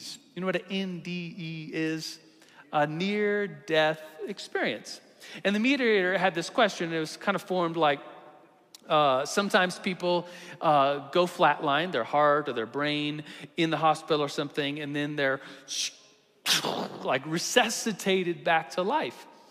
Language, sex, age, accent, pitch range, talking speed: English, male, 40-59, American, 150-195 Hz, 140 wpm